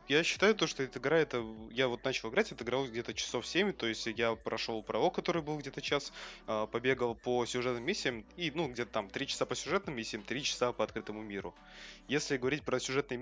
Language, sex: Russian, male